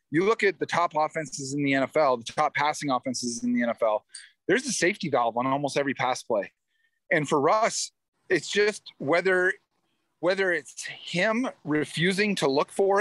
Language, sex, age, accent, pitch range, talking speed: English, male, 30-49, American, 140-180 Hz, 175 wpm